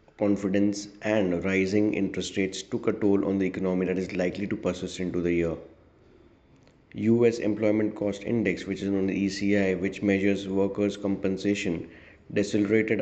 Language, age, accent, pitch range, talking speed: English, 20-39, Indian, 95-105 Hz, 150 wpm